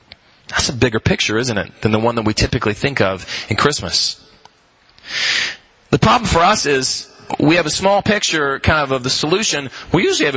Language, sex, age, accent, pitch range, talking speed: English, male, 30-49, American, 125-160 Hz, 195 wpm